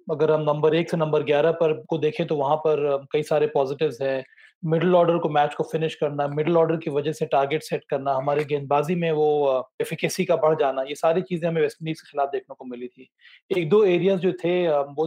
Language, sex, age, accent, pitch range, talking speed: Hindi, male, 30-49, native, 145-170 Hz, 225 wpm